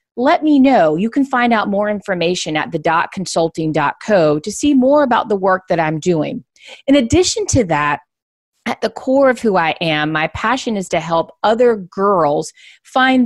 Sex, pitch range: female, 175-270 Hz